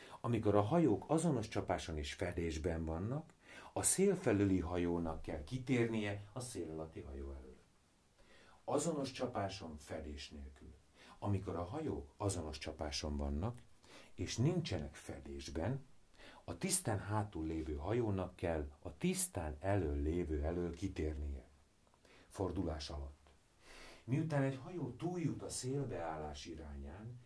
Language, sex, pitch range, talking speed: Hungarian, male, 80-115 Hz, 115 wpm